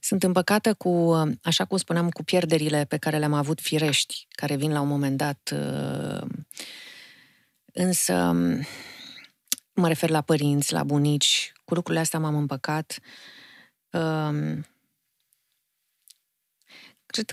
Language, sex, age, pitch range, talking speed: Romanian, female, 30-49, 145-175 Hz, 105 wpm